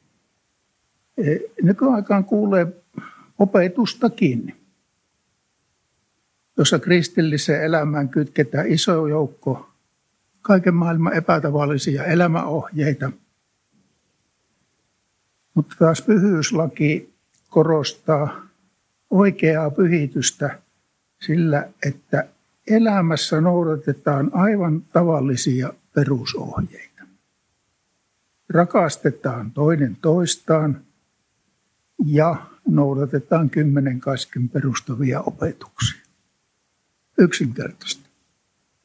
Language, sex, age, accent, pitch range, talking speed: Finnish, male, 60-79, native, 140-175 Hz, 55 wpm